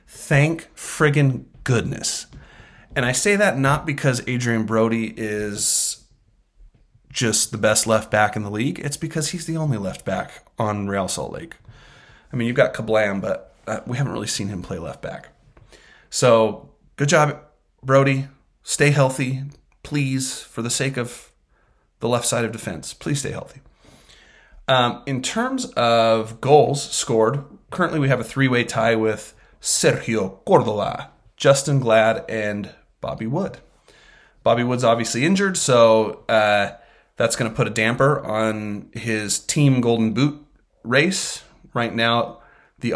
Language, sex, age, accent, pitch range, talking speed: English, male, 30-49, American, 110-140 Hz, 145 wpm